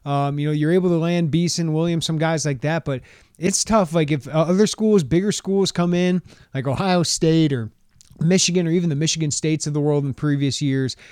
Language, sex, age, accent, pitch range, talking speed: English, male, 30-49, American, 130-165 Hz, 215 wpm